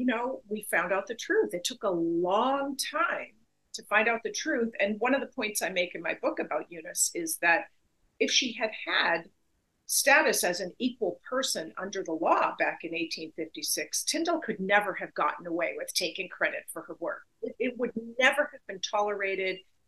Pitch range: 185-285 Hz